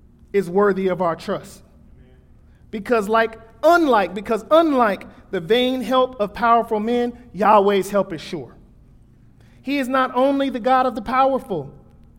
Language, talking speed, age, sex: English, 145 wpm, 40-59, male